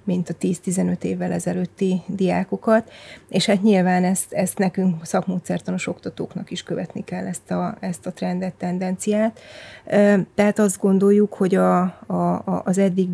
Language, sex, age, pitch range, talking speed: Hungarian, female, 30-49, 180-200 Hz, 140 wpm